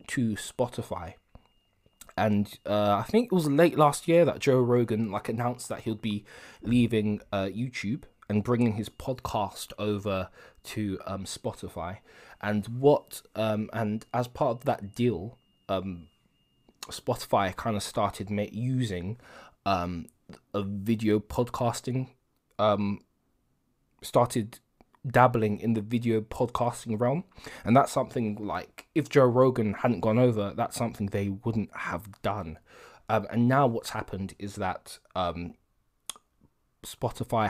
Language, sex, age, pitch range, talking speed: English, male, 20-39, 100-120 Hz, 130 wpm